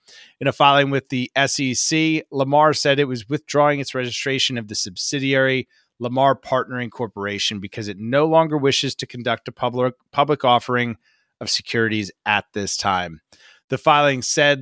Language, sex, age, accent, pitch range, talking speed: English, male, 30-49, American, 115-140 Hz, 155 wpm